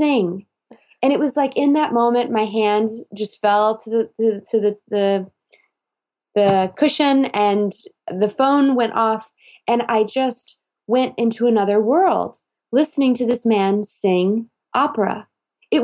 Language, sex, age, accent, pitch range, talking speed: English, female, 20-39, American, 205-265 Hz, 150 wpm